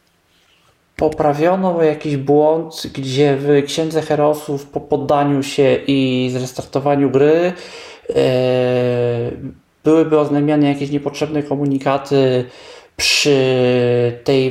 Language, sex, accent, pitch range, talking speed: Polish, male, native, 130-150 Hz, 85 wpm